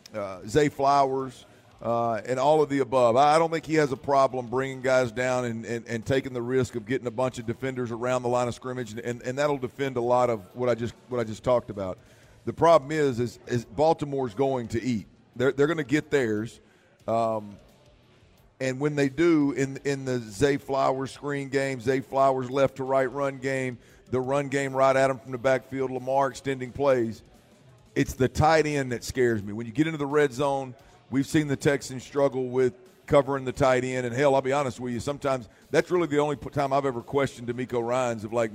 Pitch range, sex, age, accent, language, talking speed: 120-140 Hz, male, 40-59, American, English, 220 wpm